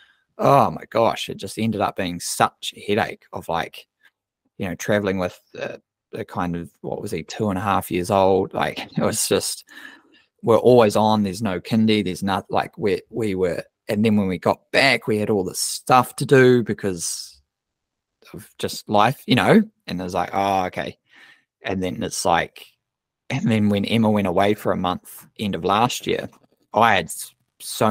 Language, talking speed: English, 195 wpm